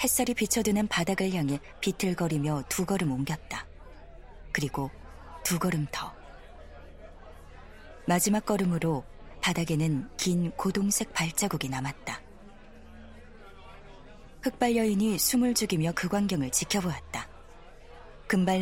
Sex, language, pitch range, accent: female, Korean, 130-205 Hz, native